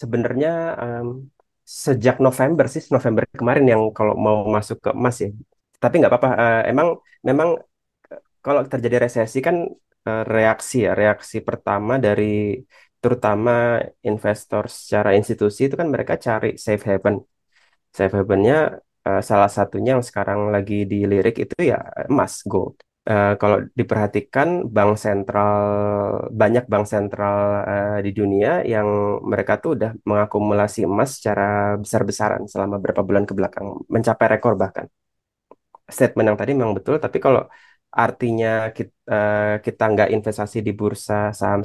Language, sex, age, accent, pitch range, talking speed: Indonesian, male, 30-49, native, 105-120 Hz, 140 wpm